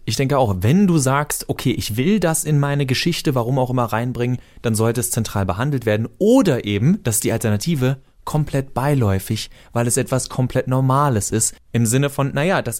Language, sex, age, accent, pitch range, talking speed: German, male, 30-49, German, 115-140 Hz, 190 wpm